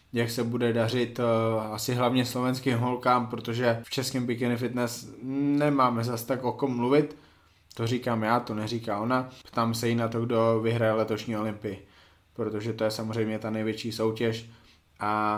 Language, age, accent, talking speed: Czech, 20-39, native, 160 wpm